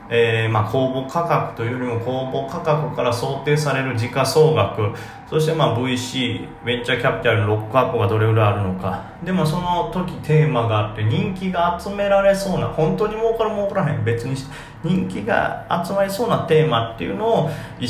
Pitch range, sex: 110-155 Hz, male